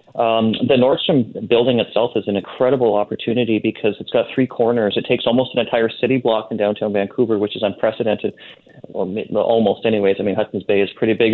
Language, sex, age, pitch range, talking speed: English, male, 30-49, 110-130 Hz, 195 wpm